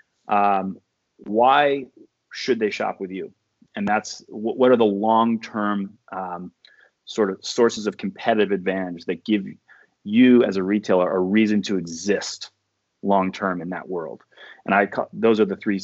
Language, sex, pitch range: English, male, 95-115 Hz